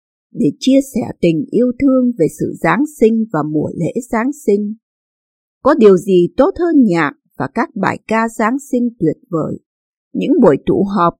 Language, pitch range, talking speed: Vietnamese, 180-270 Hz, 175 wpm